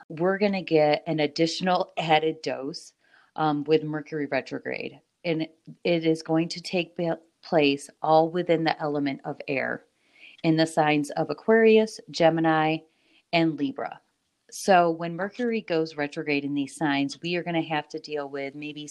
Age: 30-49